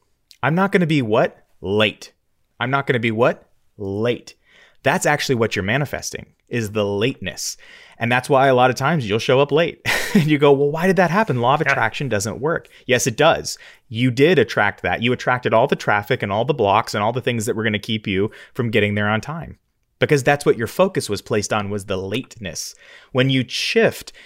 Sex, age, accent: male, 30-49, American